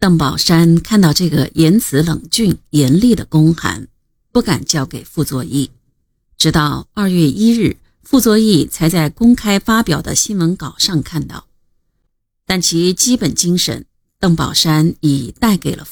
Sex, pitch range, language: female, 150-200 Hz, Chinese